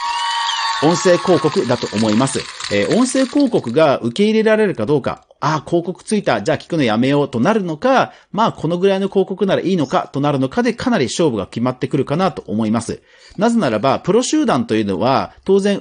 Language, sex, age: Japanese, male, 40-59